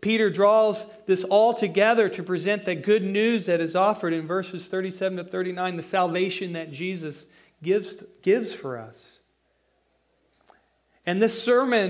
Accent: American